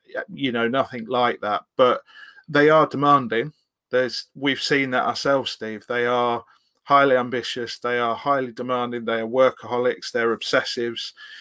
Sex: male